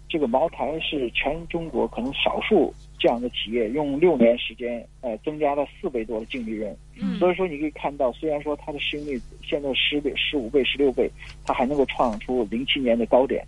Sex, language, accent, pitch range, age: male, Chinese, native, 130-175 Hz, 50-69